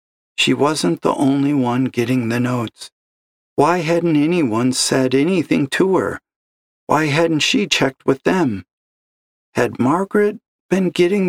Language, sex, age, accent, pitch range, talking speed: English, male, 50-69, American, 95-140 Hz, 135 wpm